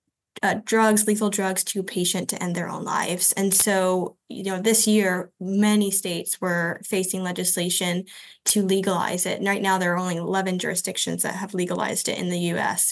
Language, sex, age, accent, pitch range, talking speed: English, female, 10-29, American, 185-210 Hz, 185 wpm